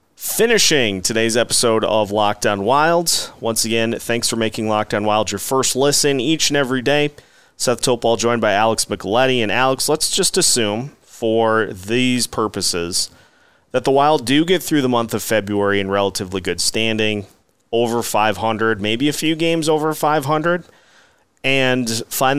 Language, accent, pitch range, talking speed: English, American, 105-130 Hz, 155 wpm